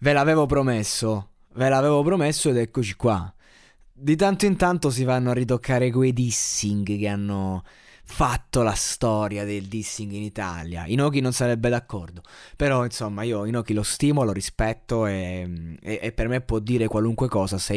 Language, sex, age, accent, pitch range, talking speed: Italian, male, 20-39, native, 105-135 Hz, 170 wpm